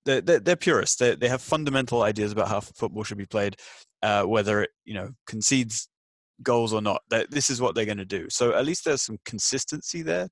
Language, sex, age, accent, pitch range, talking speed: English, male, 20-39, British, 105-125 Hz, 225 wpm